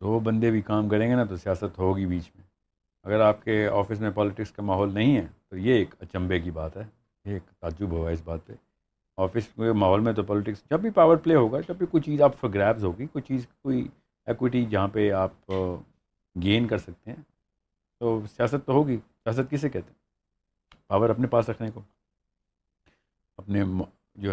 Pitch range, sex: 95-115 Hz, male